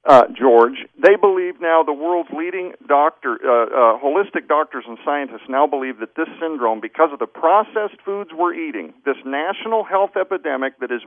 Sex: male